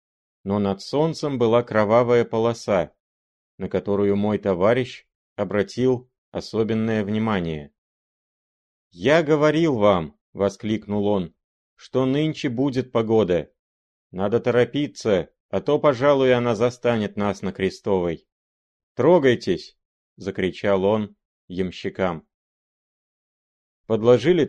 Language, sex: Russian, male